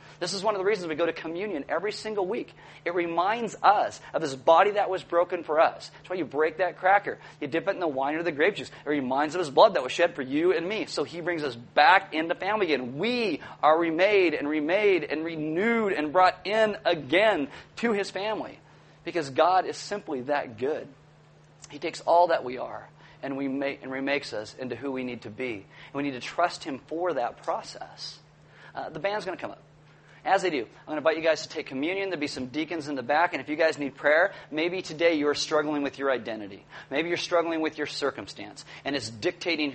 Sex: male